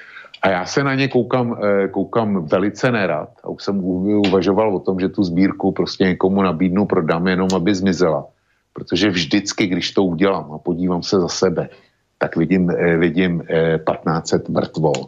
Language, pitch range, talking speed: Slovak, 85-100 Hz, 160 wpm